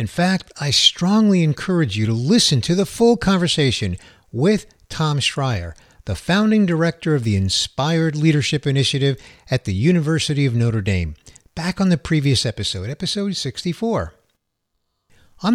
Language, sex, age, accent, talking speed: English, male, 50-69, American, 145 wpm